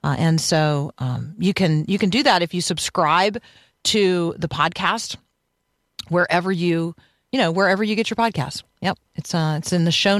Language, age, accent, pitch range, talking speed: English, 40-59, American, 155-200 Hz, 190 wpm